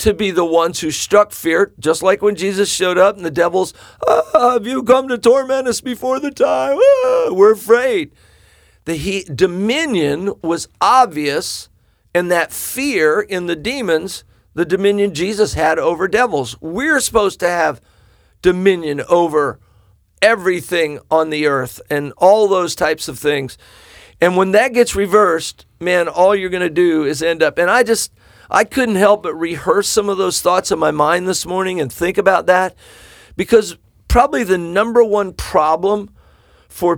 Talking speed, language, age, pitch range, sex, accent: 170 wpm, English, 50-69, 160-205 Hz, male, American